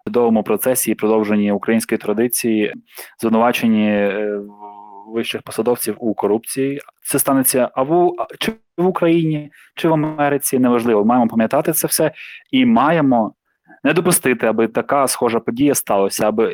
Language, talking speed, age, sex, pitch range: Ukrainian, 130 wpm, 20-39, male, 115-140 Hz